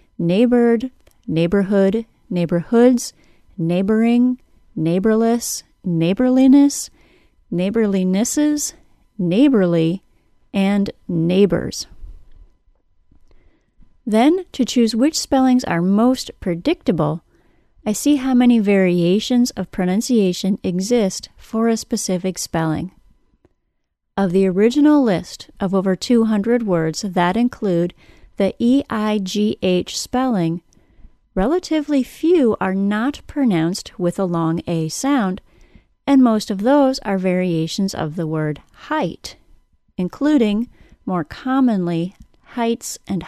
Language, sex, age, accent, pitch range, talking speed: English, female, 30-49, American, 180-245 Hz, 95 wpm